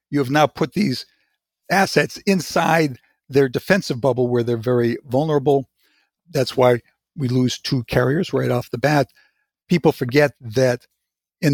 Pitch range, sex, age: 120-150 Hz, male, 50-69